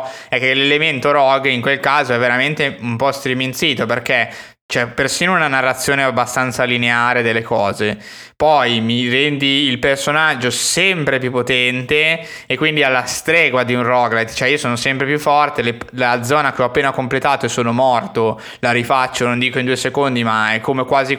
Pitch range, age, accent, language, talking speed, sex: 110-130 Hz, 20-39, native, Italian, 180 wpm, male